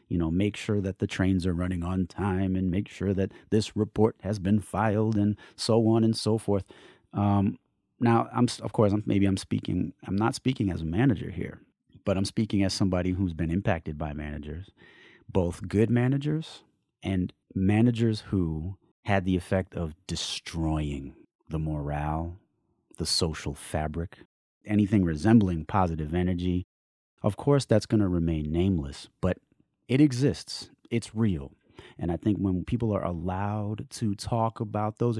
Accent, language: American, English